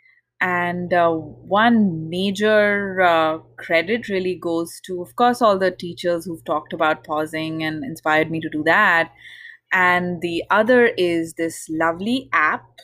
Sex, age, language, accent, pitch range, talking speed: female, 20-39, English, Indian, 170-230 Hz, 145 wpm